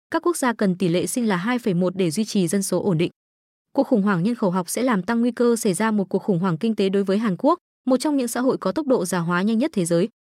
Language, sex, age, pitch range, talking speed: Vietnamese, female, 20-39, 190-250 Hz, 305 wpm